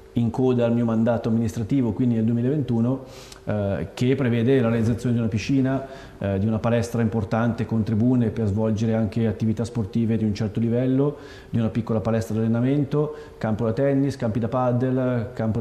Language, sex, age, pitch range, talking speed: Italian, male, 30-49, 110-130 Hz, 175 wpm